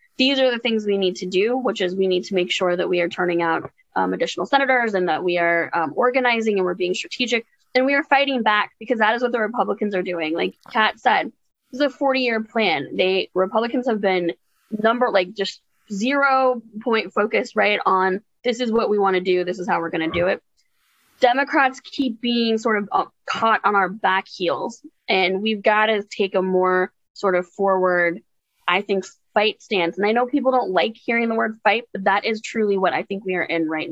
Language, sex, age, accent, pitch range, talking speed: English, female, 20-39, American, 180-230 Hz, 225 wpm